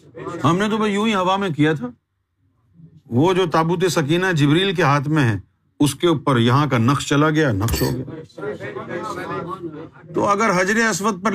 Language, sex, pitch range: Urdu, male, 120-185 Hz